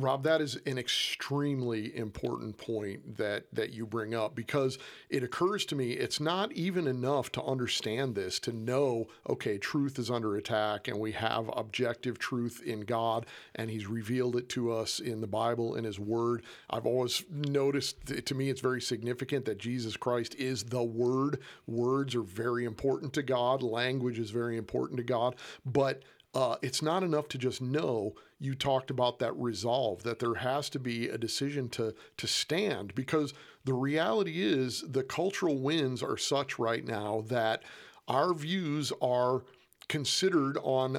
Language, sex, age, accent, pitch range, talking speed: English, male, 40-59, American, 120-140 Hz, 170 wpm